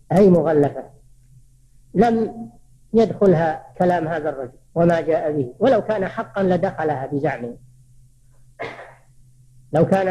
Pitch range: 130-215 Hz